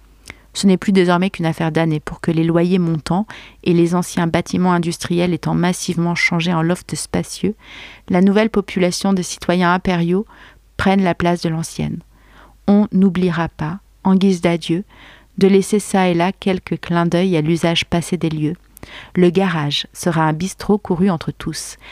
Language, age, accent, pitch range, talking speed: French, 40-59, French, 170-200 Hz, 165 wpm